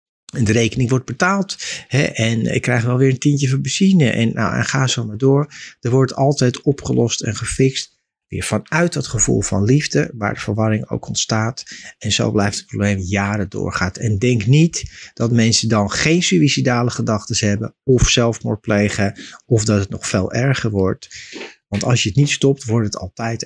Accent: Dutch